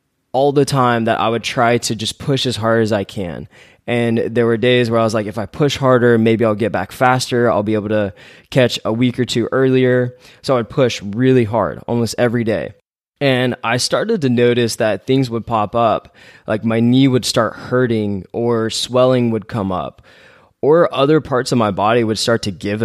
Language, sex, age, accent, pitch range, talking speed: English, male, 20-39, American, 110-125 Hz, 215 wpm